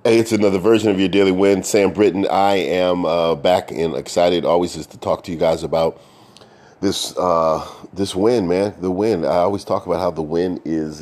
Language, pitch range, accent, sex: English, 75-95 Hz, American, male